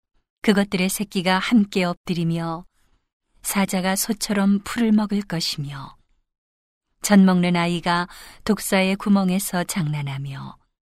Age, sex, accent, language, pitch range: 40-59, female, native, Korean, 175-200 Hz